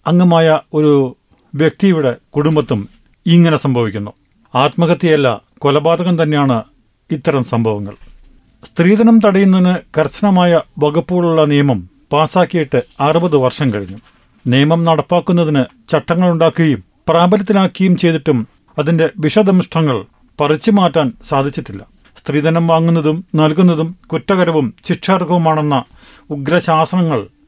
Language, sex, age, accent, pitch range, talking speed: Malayalam, male, 40-59, native, 140-175 Hz, 80 wpm